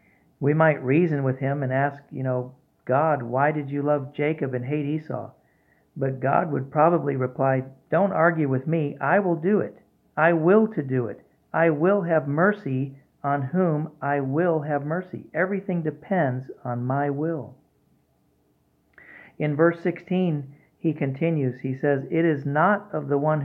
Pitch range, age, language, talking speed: 130-165 Hz, 50-69, English, 165 wpm